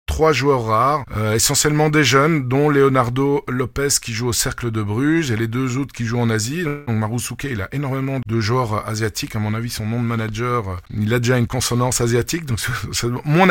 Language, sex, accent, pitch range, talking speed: French, male, French, 110-140 Hz, 220 wpm